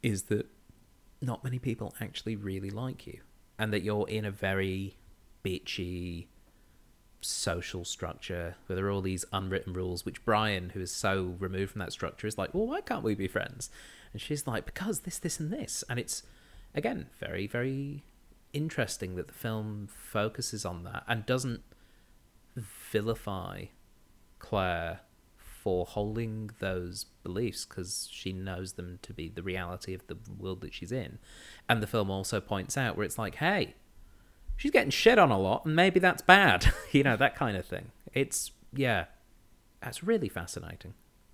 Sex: male